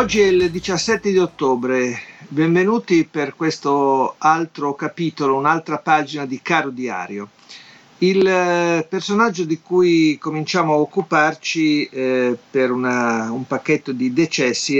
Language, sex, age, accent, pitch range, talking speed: Italian, male, 50-69, native, 130-160 Hz, 120 wpm